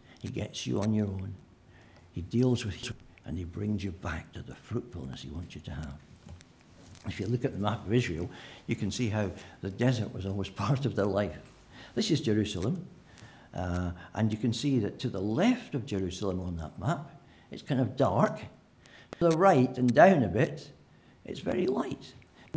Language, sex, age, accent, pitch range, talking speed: English, male, 60-79, British, 90-120 Hz, 200 wpm